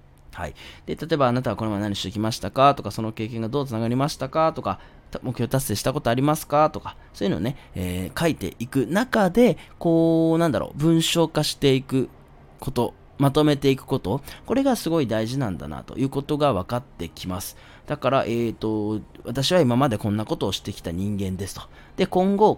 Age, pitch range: 20-39, 105-165 Hz